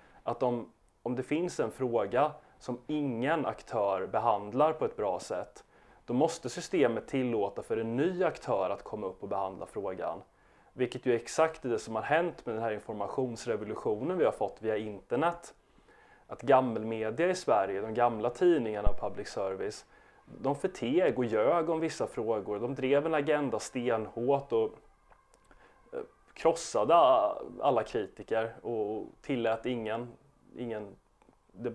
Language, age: Swedish, 30-49